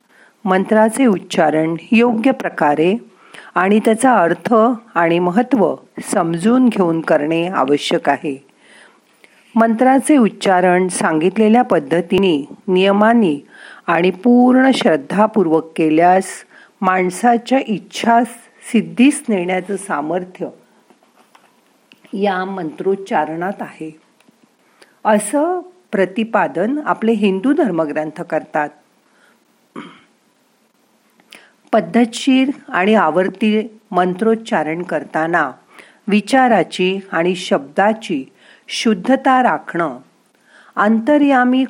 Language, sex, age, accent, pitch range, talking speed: Marathi, female, 50-69, native, 175-235 Hz, 70 wpm